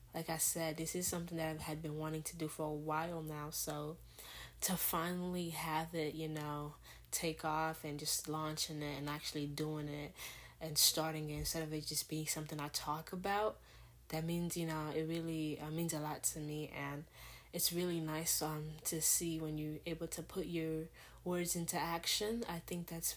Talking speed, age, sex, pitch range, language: 200 wpm, 10-29, female, 150-170 Hz, English